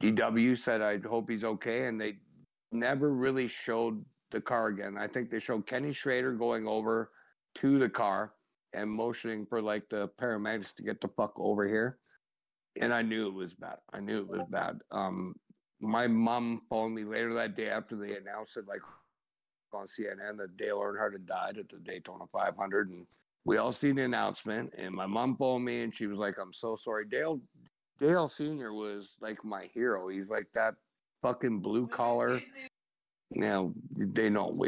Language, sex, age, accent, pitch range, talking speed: English, male, 50-69, American, 105-125 Hz, 185 wpm